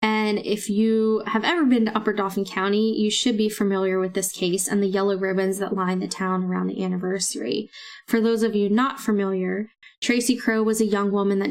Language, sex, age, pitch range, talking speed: English, female, 10-29, 200-230 Hz, 215 wpm